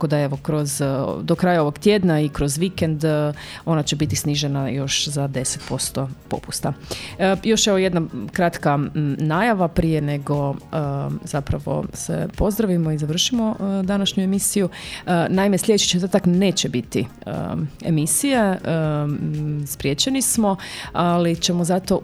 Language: Croatian